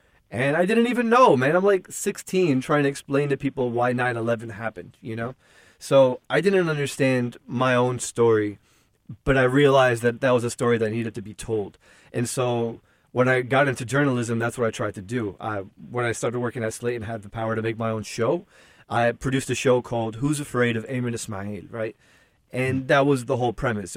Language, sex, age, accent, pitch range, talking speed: English, male, 30-49, American, 115-145 Hz, 210 wpm